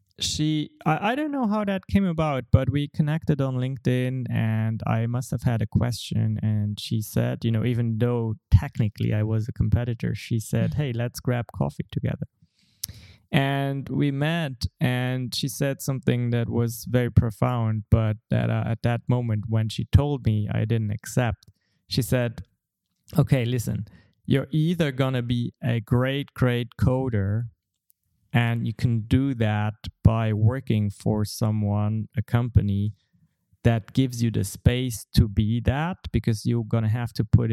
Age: 20-39